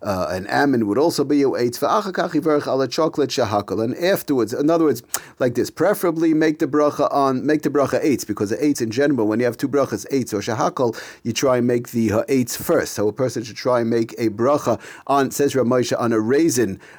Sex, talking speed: male, 210 wpm